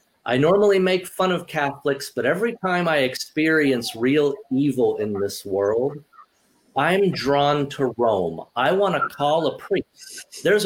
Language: English